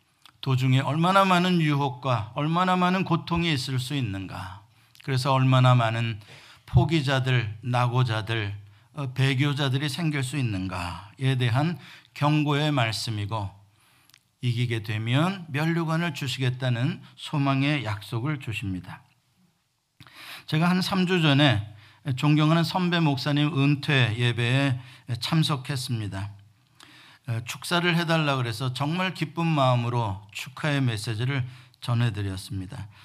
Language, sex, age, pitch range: Korean, male, 50-69, 120-150 Hz